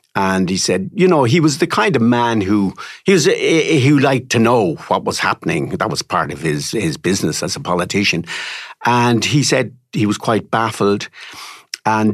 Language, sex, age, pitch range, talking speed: English, male, 60-79, 95-130 Hz, 200 wpm